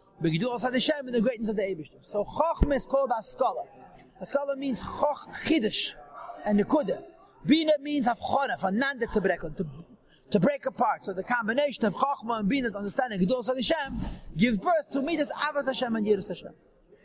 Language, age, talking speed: English, 40-59, 160 wpm